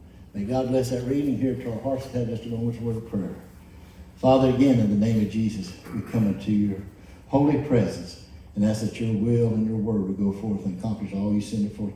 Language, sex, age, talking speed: English, male, 60-79, 245 wpm